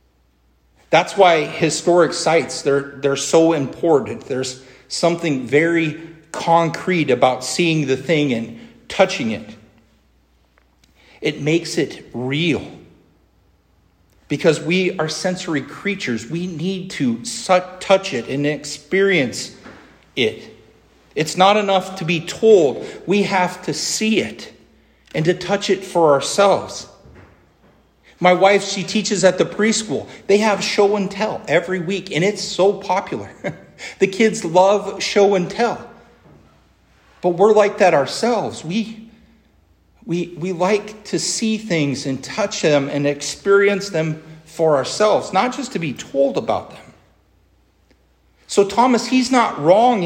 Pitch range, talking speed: 145-200 Hz, 130 wpm